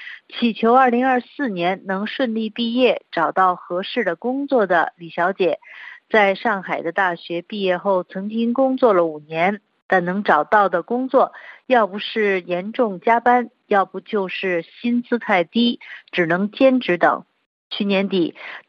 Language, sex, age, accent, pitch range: Chinese, female, 50-69, native, 185-235 Hz